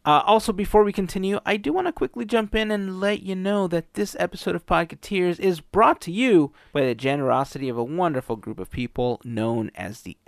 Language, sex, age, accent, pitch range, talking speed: English, male, 30-49, American, 120-165 Hz, 215 wpm